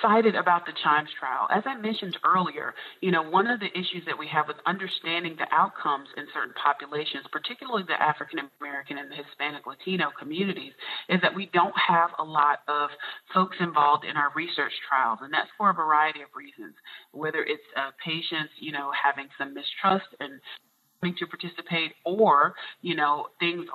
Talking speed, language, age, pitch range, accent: 180 wpm, English, 30-49, 150-190 Hz, American